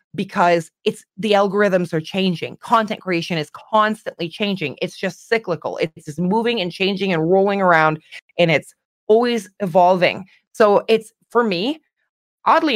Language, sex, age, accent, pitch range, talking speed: English, female, 20-39, American, 170-210 Hz, 145 wpm